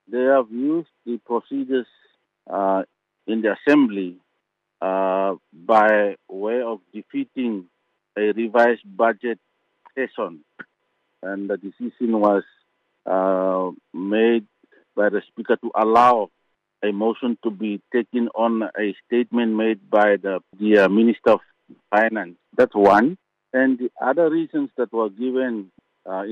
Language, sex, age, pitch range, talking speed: English, male, 50-69, 100-115 Hz, 125 wpm